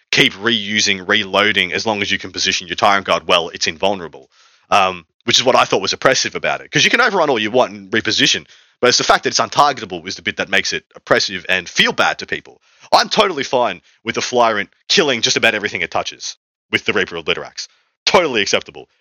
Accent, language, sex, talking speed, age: Australian, English, male, 225 wpm, 30-49